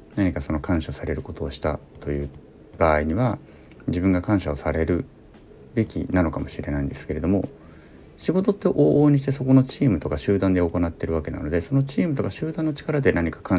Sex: male